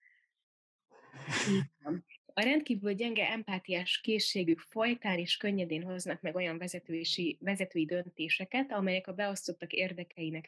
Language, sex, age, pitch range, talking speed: Hungarian, female, 20-39, 165-205 Hz, 110 wpm